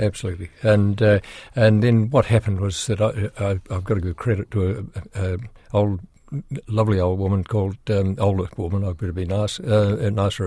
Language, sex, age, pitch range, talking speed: English, male, 60-79, 95-115 Hz, 200 wpm